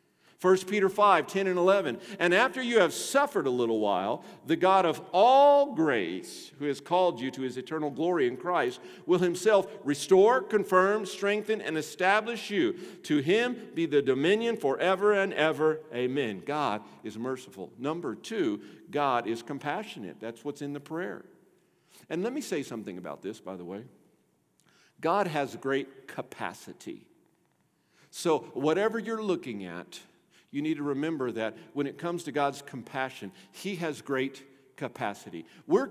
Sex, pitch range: male, 130-190 Hz